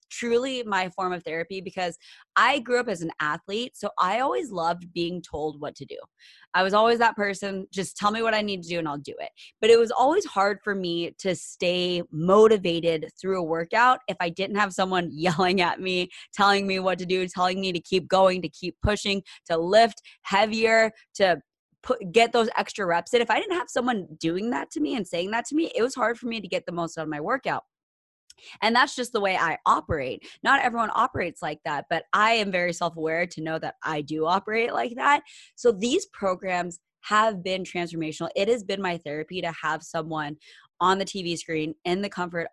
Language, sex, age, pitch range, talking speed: English, female, 20-39, 165-210 Hz, 215 wpm